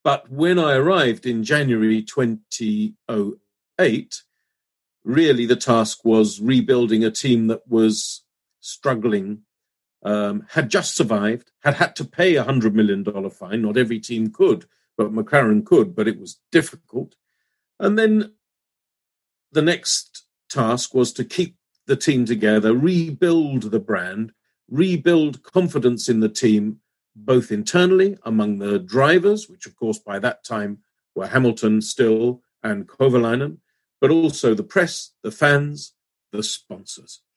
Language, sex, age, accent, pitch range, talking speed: Greek, male, 50-69, British, 110-145 Hz, 135 wpm